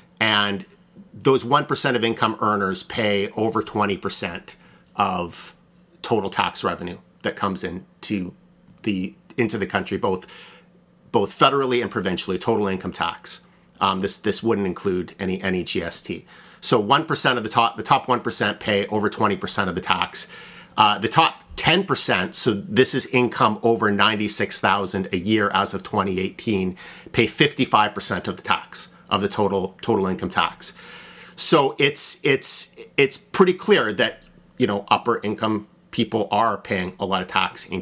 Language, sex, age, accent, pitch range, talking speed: English, male, 30-49, American, 95-115 Hz, 170 wpm